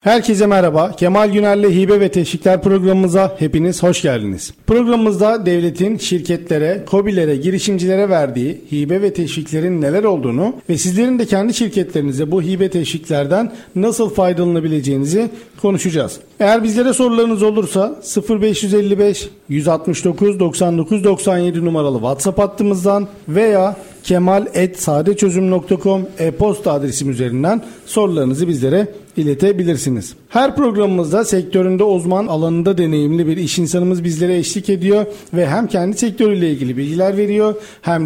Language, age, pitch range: Turkish, 50-69, 165-200 Hz